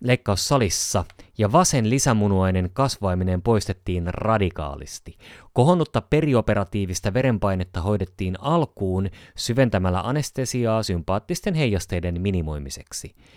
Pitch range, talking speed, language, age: 90-120 Hz, 75 wpm, Finnish, 30-49